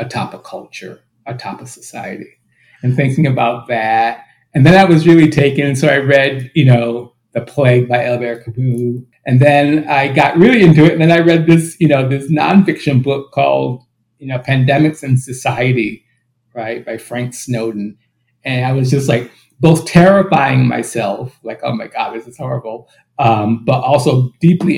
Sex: male